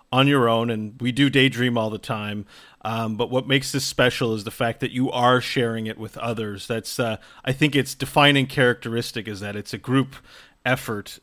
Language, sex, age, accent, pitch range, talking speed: English, male, 40-59, American, 115-135 Hz, 210 wpm